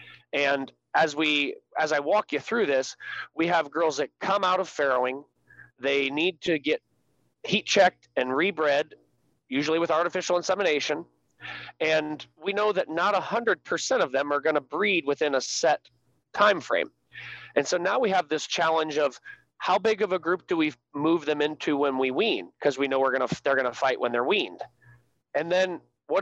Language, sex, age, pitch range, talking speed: English, male, 30-49, 145-190 Hz, 195 wpm